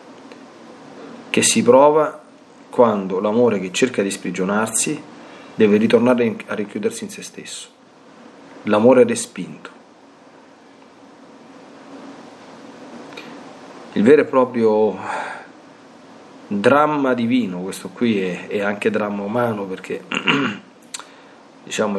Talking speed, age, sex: 90 wpm, 40-59, male